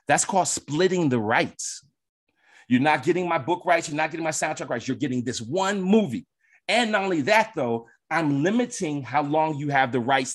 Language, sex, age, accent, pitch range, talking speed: English, male, 30-49, American, 130-200 Hz, 205 wpm